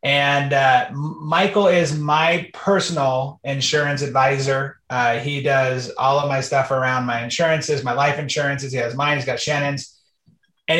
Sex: male